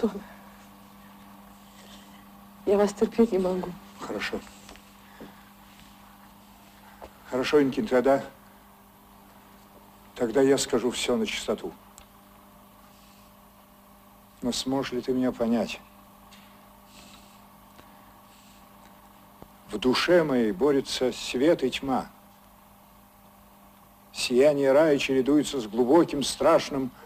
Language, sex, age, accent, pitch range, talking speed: Russian, male, 60-79, native, 100-125 Hz, 75 wpm